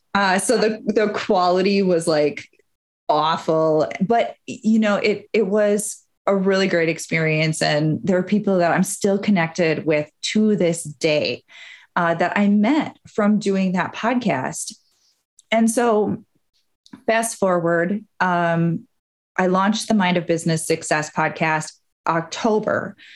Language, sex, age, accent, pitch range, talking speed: English, female, 30-49, American, 155-205 Hz, 135 wpm